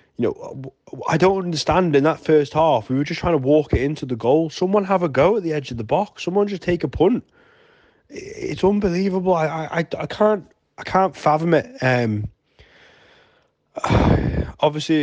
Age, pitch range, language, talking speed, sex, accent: 20-39, 115-150 Hz, English, 185 wpm, male, British